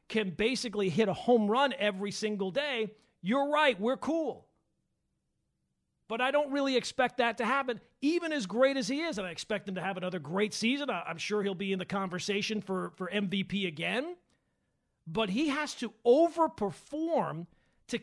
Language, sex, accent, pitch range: English, male, American, 185-265 Hz